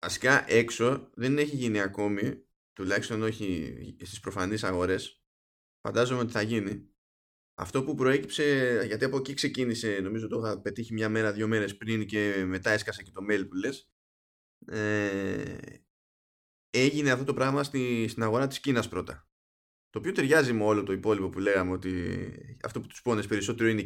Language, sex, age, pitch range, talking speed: Greek, male, 20-39, 95-130 Hz, 165 wpm